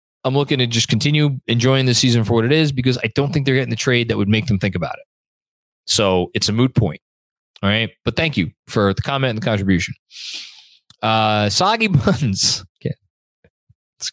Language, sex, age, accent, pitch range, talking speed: English, male, 20-39, American, 110-140 Hz, 205 wpm